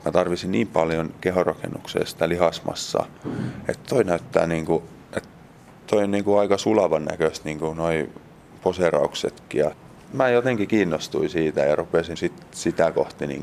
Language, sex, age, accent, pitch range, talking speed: Finnish, male, 30-49, native, 80-85 Hz, 145 wpm